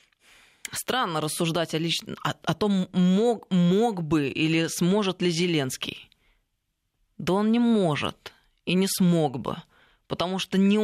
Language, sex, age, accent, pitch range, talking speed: Russian, female, 20-39, native, 145-185 Hz, 125 wpm